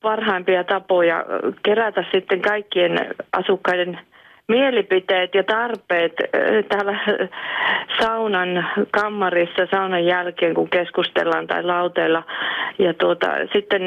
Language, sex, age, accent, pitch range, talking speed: Finnish, female, 30-49, native, 180-205 Hz, 90 wpm